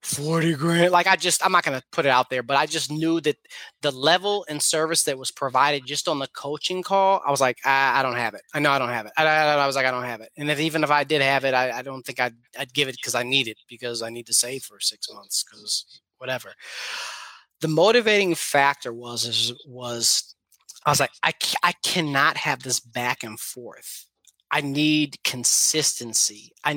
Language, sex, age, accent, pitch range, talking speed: English, male, 30-49, American, 125-160 Hz, 230 wpm